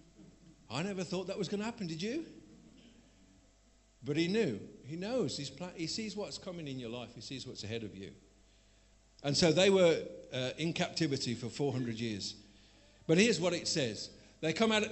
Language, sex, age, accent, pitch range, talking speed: English, male, 50-69, British, 125-170 Hz, 195 wpm